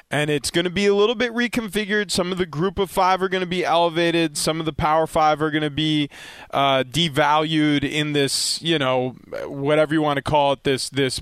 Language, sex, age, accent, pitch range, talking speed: English, male, 20-39, American, 135-165 Hz, 230 wpm